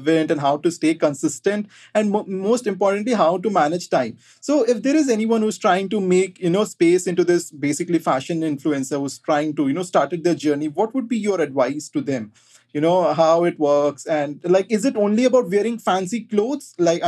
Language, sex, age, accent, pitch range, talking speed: English, male, 20-39, Indian, 155-205 Hz, 210 wpm